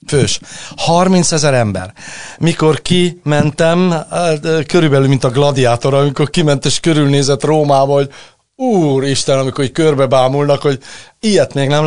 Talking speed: 115 wpm